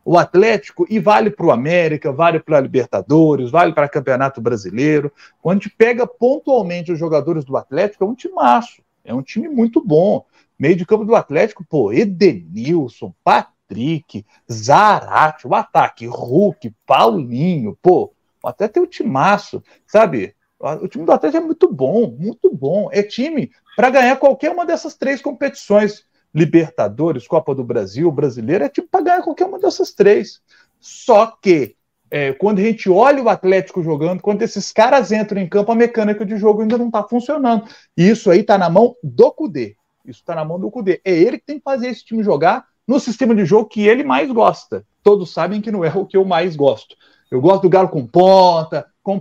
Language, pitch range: Portuguese, 170-245 Hz